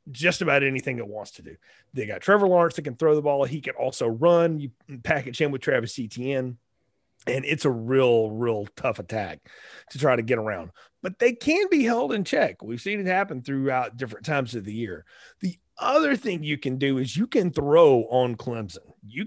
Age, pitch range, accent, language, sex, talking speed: 30-49, 120-170 Hz, American, English, male, 210 wpm